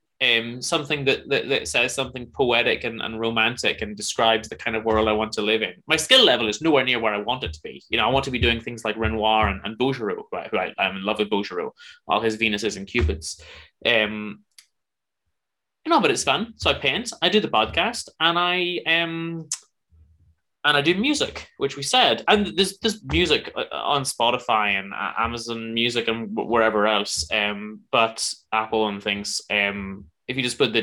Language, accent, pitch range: Hindi, British, 105-145 Hz